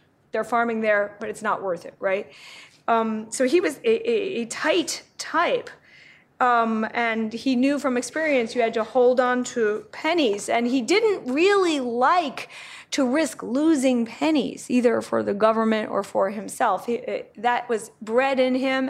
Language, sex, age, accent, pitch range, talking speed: English, female, 30-49, American, 220-265 Hz, 170 wpm